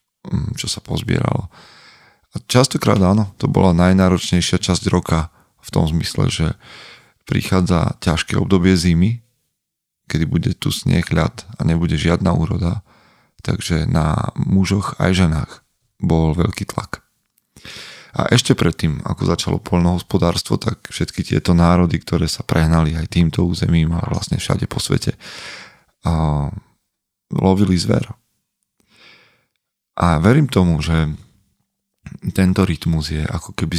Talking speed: 125 wpm